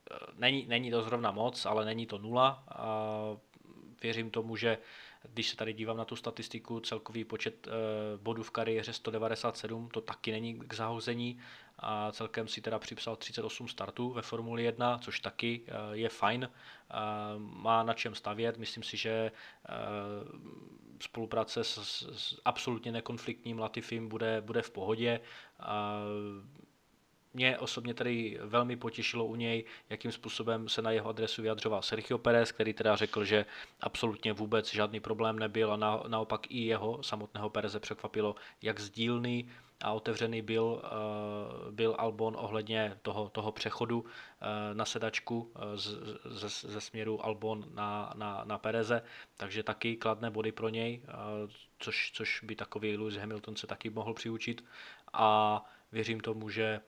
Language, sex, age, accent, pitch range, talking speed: Czech, male, 20-39, native, 110-115 Hz, 155 wpm